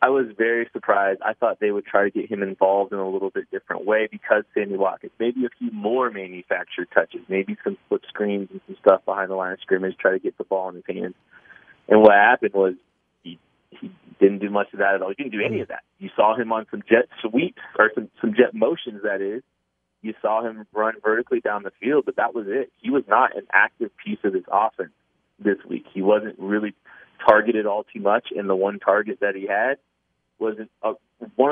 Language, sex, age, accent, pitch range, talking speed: English, male, 30-49, American, 100-115 Hz, 230 wpm